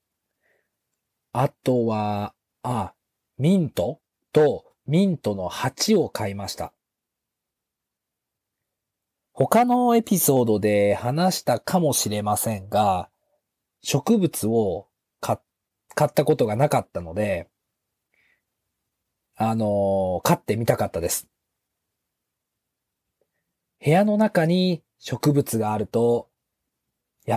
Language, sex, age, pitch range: Japanese, male, 40-59, 105-155 Hz